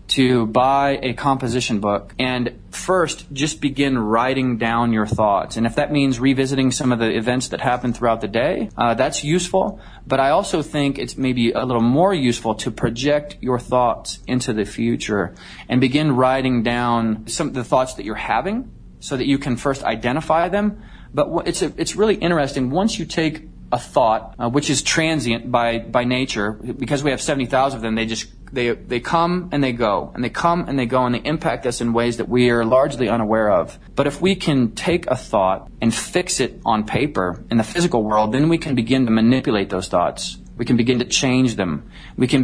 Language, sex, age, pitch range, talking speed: English, male, 30-49, 115-145 Hz, 210 wpm